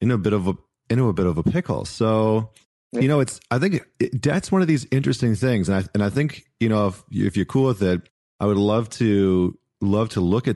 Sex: male